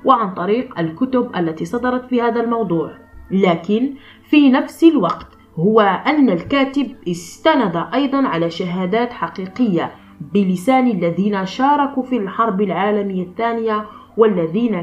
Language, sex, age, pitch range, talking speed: Arabic, female, 20-39, 175-235 Hz, 115 wpm